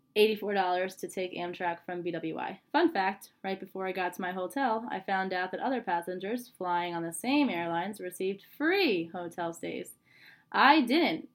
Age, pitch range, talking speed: 10-29, 180-235 Hz, 165 wpm